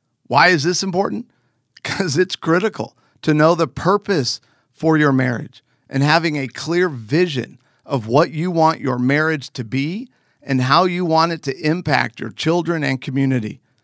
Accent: American